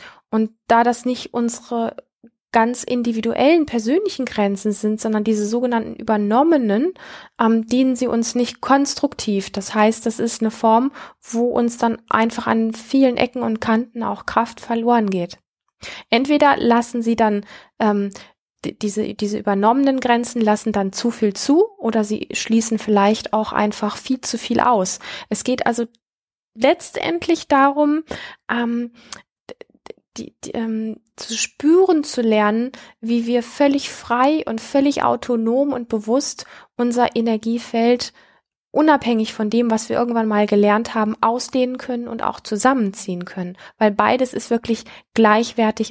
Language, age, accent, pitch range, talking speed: German, 20-39, German, 220-255 Hz, 140 wpm